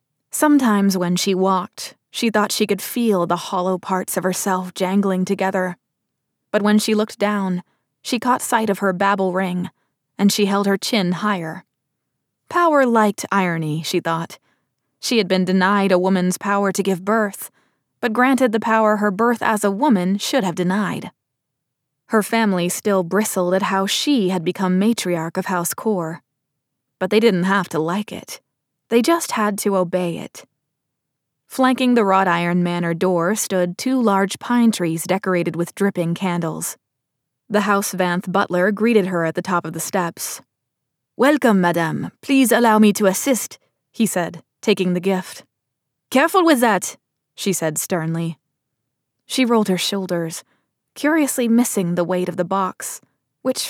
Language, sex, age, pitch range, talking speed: English, female, 20-39, 175-215 Hz, 160 wpm